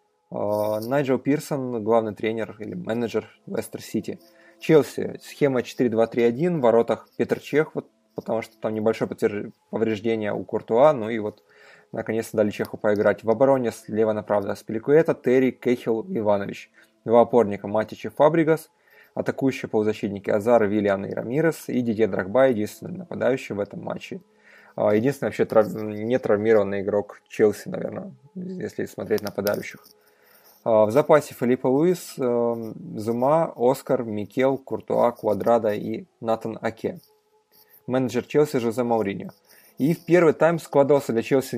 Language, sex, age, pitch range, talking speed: Russian, male, 20-39, 110-130 Hz, 130 wpm